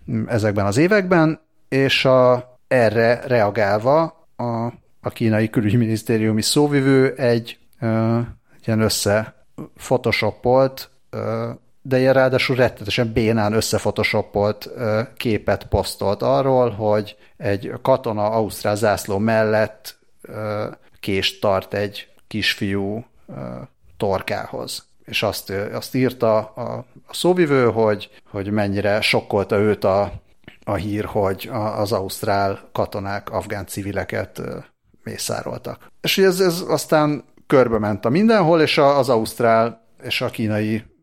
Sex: male